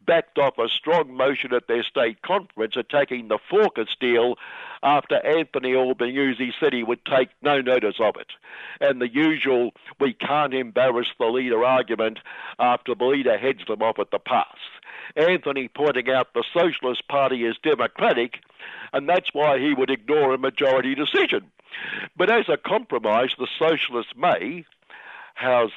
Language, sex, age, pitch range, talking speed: English, male, 60-79, 120-150 Hz, 160 wpm